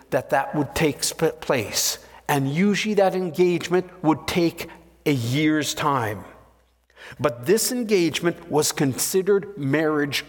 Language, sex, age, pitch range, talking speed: English, male, 60-79, 135-190 Hz, 115 wpm